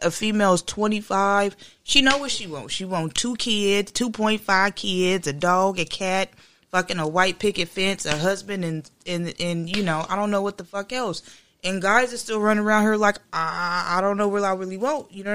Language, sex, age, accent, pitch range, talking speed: English, female, 20-39, American, 155-205 Hz, 225 wpm